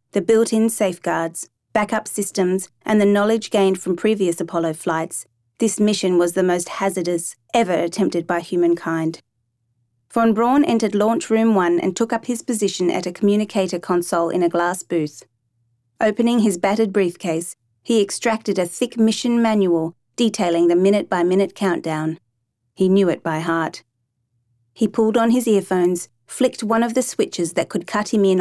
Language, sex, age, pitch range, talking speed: English, female, 30-49, 165-210 Hz, 160 wpm